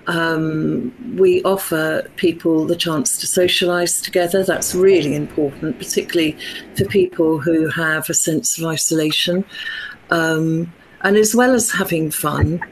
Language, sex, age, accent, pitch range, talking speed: English, female, 50-69, British, 160-190 Hz, 130 wpm